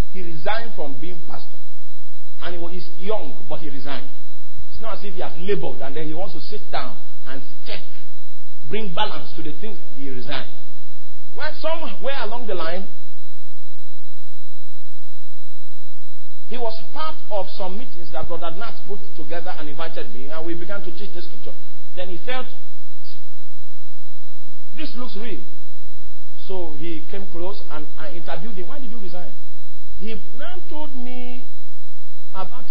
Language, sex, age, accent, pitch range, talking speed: English, male, 50-69, Nigerian, 135-220 Hz, 155 wpm